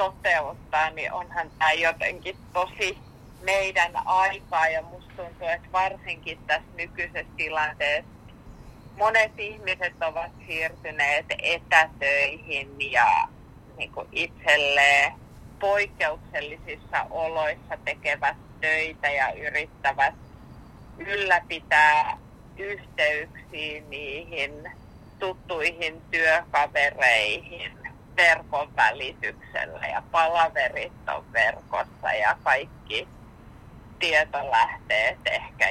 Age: 30-49